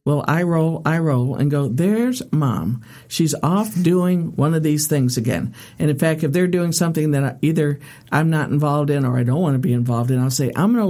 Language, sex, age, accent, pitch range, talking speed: English, male, 60-79, American, 135-175 Hz, 235 wpm